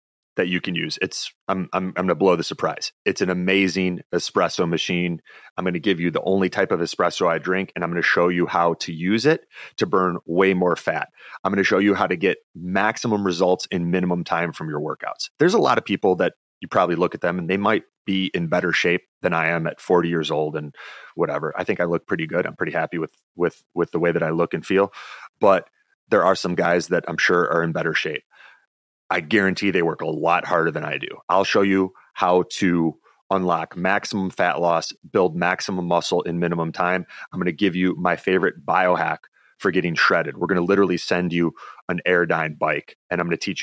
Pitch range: 85-95 Hz